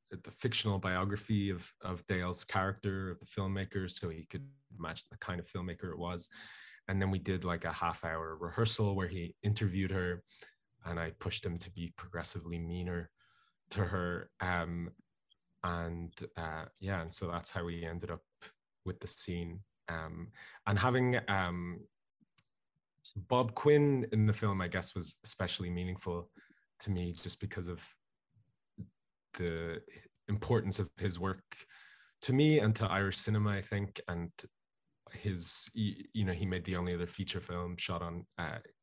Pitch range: 85-100 Hz